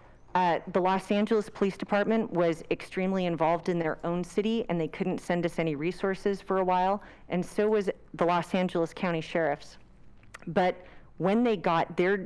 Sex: female